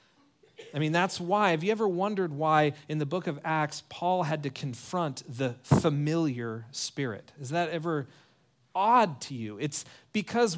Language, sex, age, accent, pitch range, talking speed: English, male, 40-59, American, 145-210 Hz, 165 wpm